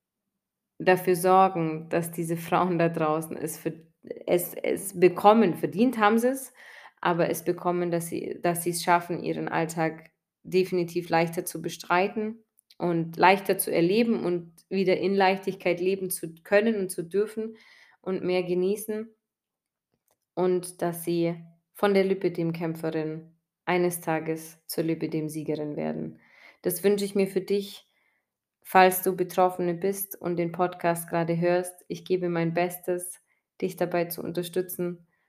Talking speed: 145 wpm